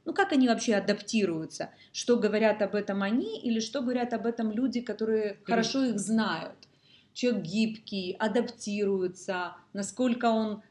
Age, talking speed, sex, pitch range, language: 30-49, 140 wpm, female, 185-230 Hz, Russian